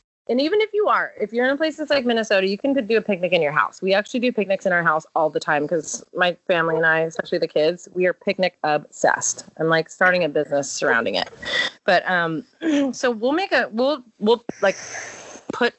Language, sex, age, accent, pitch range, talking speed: English, female, 30-49, American, 190-255 Hz, 220 wpm